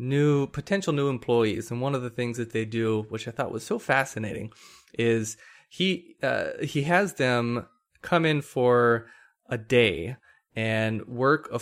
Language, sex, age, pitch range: English, male, 20-39, 115-145 Hz